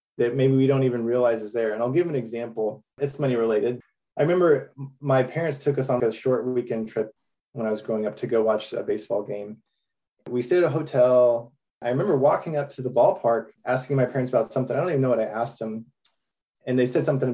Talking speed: 230 wpm